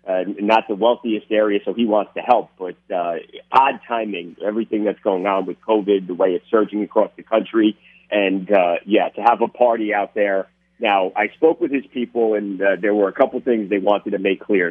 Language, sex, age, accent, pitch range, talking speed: English, male, 50-69, American, 100-120 Hz, 220 wpm